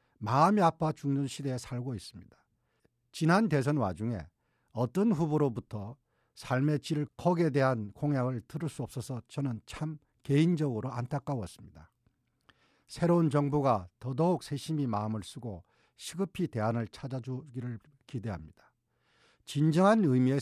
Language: Korean